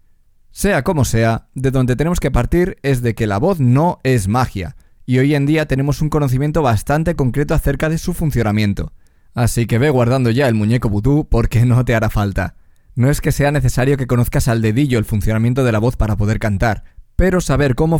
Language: Spanish